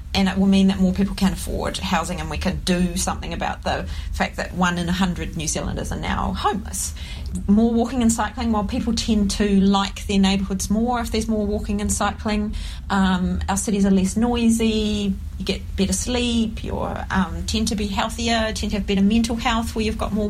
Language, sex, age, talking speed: English, female, 40-59, 215 wpm